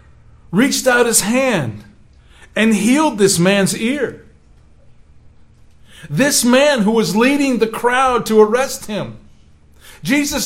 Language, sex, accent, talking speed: English, male, American, 115 wpm